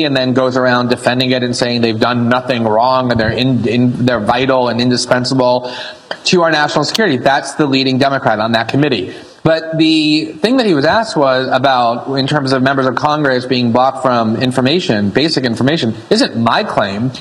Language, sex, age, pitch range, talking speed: English, male, 30-49, 135-170 Hz, 190 wpm